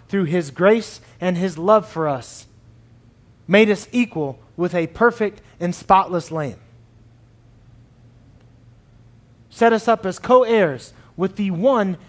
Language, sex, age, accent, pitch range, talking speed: English, male, 30-49, American, 115-180 Hz, 125 wpm